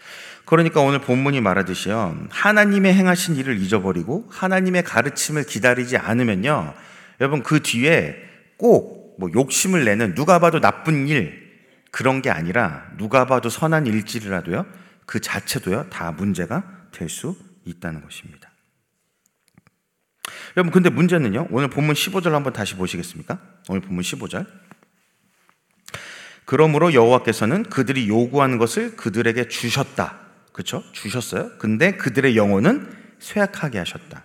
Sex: male